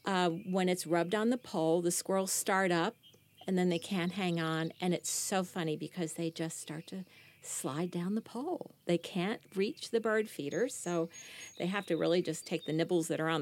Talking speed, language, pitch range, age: 215 wpm, English, 165-215 Hz, 50-69